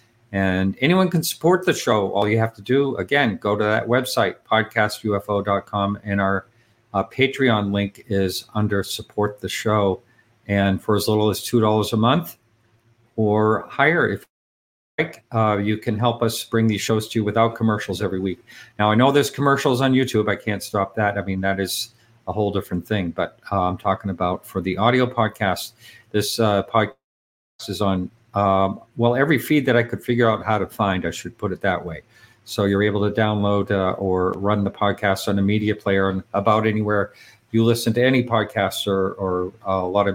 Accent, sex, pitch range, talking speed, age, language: American, male, 95-115 Hz, 200 wpm, 50-69, English